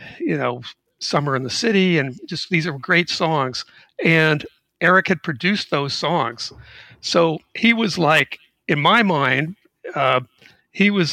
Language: English